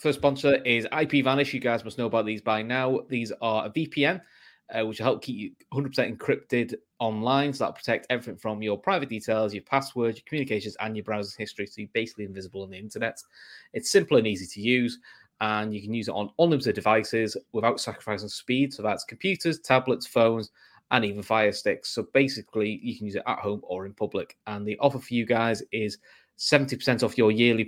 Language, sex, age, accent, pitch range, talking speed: English, male, 20-39, British, 105-135 Hz, 215 wpm